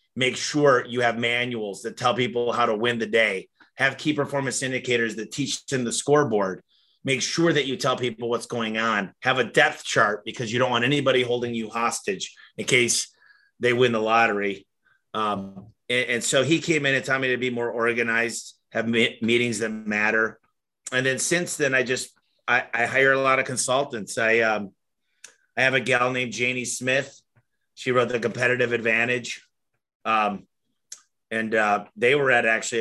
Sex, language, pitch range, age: male, English, 115-135 Hz, 30-49